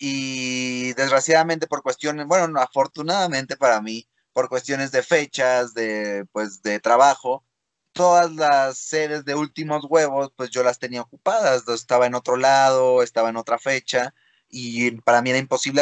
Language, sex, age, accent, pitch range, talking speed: Spanish, male, 30-49, Mexican, 120-155 Hz, 150 wpm